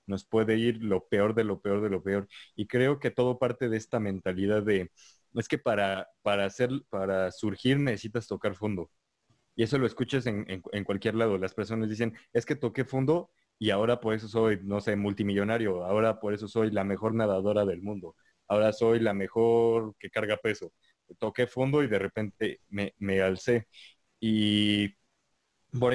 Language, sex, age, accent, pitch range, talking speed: Spanish, male, 20-39, Mexican, 100-120 Hz, 185 wpm